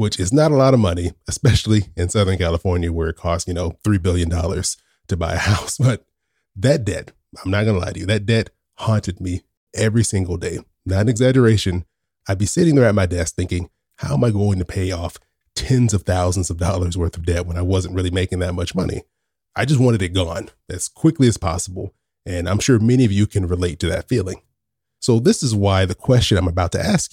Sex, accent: male, American